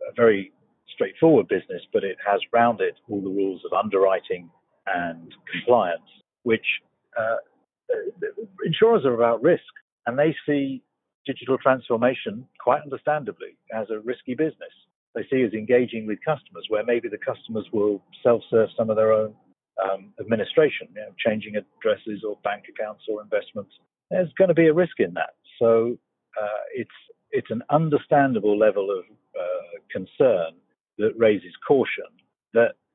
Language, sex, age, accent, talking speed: English, male, 50-69, British, 150 wpm